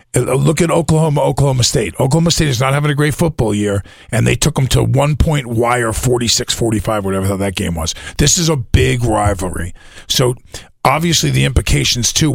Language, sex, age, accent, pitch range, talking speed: English, male, 50-69, American, 95-130 Hz, 175 wpm